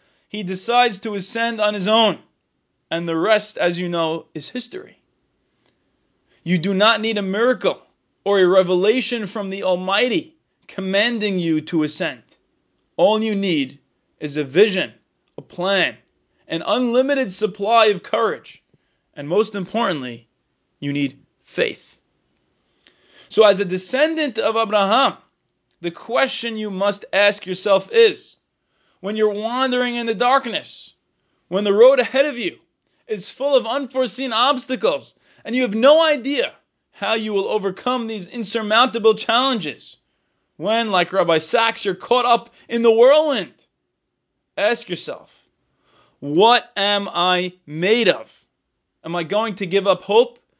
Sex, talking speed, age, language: male, 140 wpm, 20-39, English